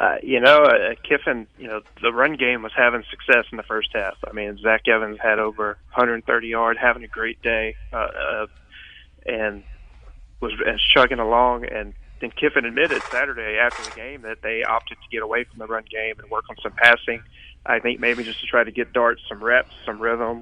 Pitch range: 110-120 Hz